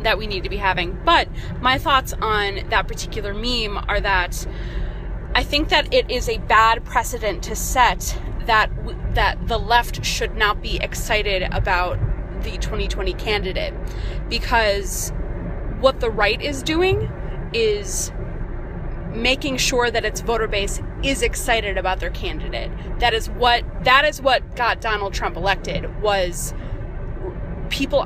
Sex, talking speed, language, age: female, 145 wpm, English, 20-39